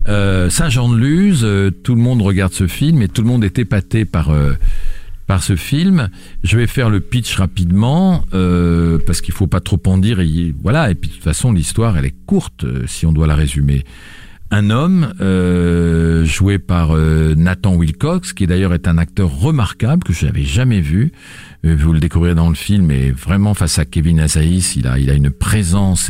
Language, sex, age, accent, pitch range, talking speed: French, male, 50-69, French, 85-115 Hz, 205 wpm